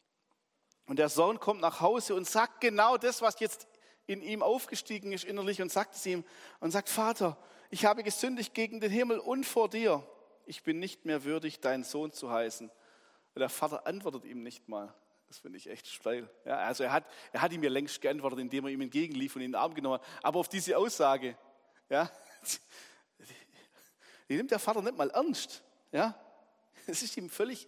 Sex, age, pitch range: male, 40-59, 165-230 Hz